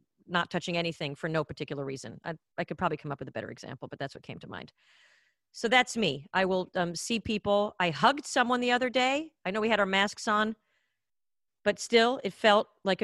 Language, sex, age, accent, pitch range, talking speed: English, female, 40-59, American, 175-235 Hz, 225 wpm